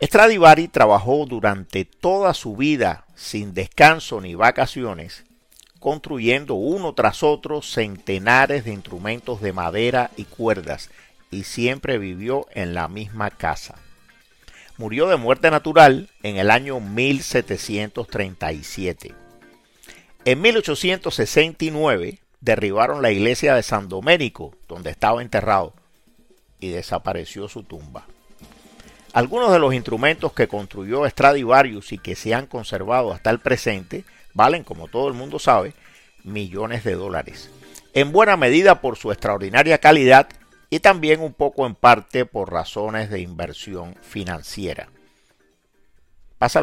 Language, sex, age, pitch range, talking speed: Spanish, male, 50-69, 95-140 Hz, 120 wpm